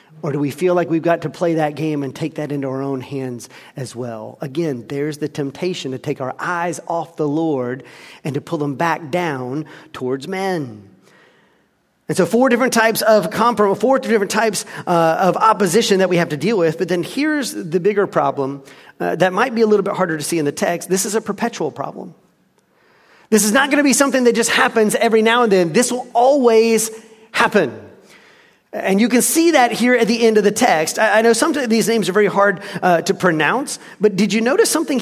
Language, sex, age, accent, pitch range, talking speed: English, male, 40-59, American, 160-230 Hz, 220 wpm